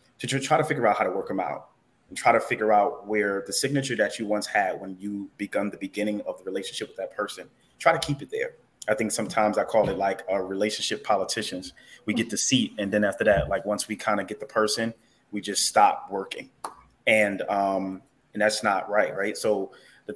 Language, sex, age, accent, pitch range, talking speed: English, male, 20-39, American, 100-110 Hz, 230 wpm